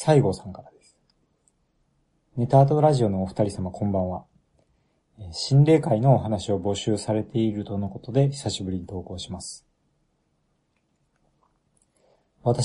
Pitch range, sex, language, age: 100-140 Hz, male, Japanese, 40-59